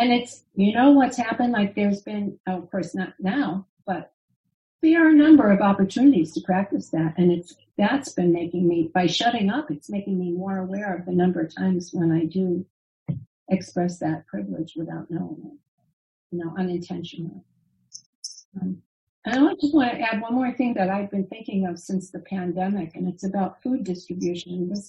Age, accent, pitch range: 50-69, American, 175-210 Hz